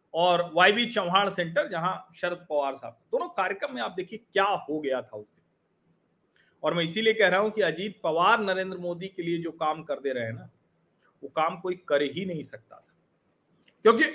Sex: male